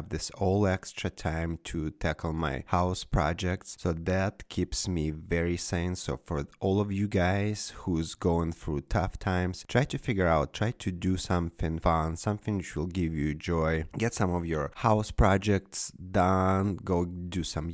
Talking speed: 175 wpm